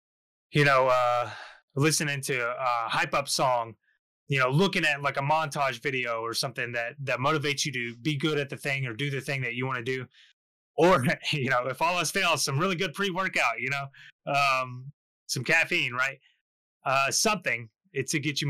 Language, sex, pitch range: English, male, 125-155 Hz